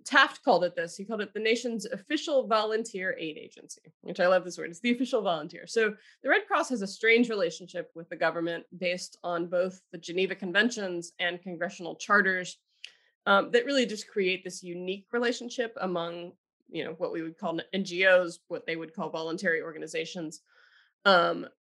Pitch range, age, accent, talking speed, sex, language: 175-220 Hz, 20-39, American, 180 wpm, female, English